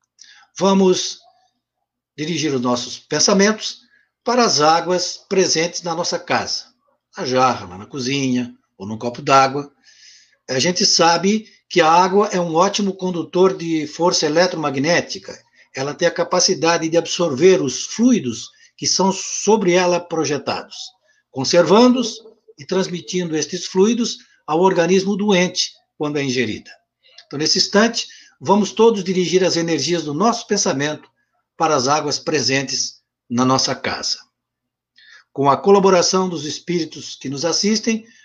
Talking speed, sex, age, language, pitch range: 130 wpm, male, 60-79, Portuguese, 145-195 Hz